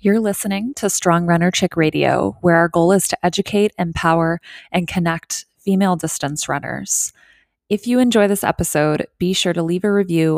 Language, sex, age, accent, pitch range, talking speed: English, female, 20-39, American, 150-185 Hz, 175 wpm